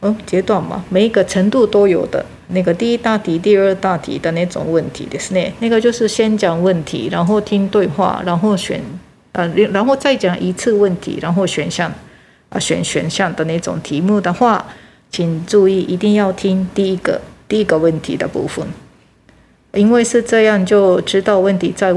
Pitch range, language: 180-225 Hz, Japanese